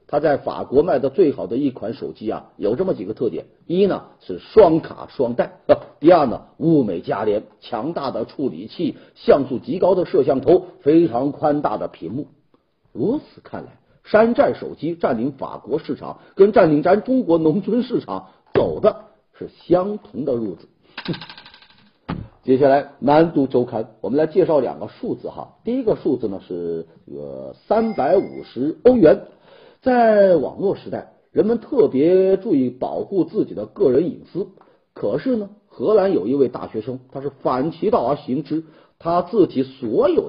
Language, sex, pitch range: Chinese, male, 140-225 Hz